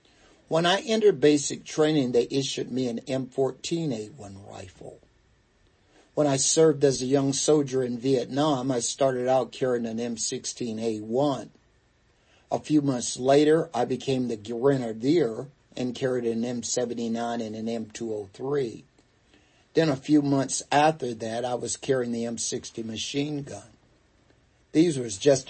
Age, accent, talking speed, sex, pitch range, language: 50-69, American, 135 wpm, male, 115-145 Hz, English